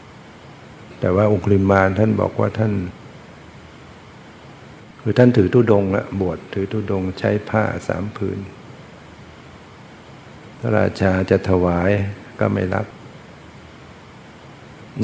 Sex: male